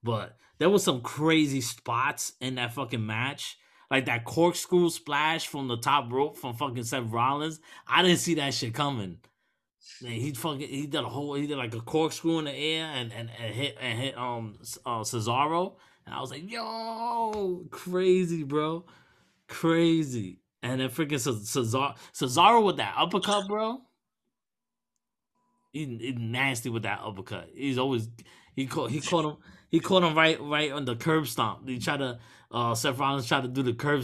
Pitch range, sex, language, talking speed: 120-160 Hz, male, English, 185 wpm